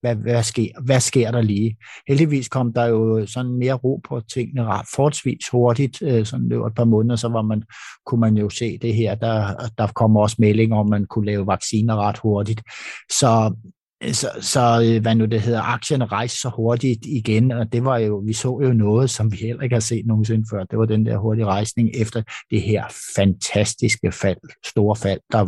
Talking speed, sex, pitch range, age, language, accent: 200 wpm, male, 105-120 Hz, 60-79, Danish, native